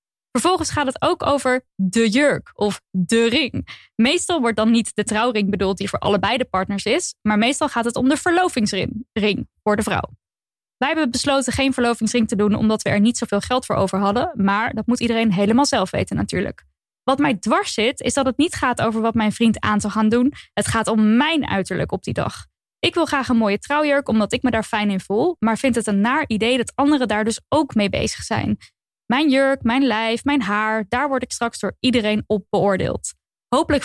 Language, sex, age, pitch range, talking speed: Dutch, female, 10-29, 210-270 Hz, 220 wpm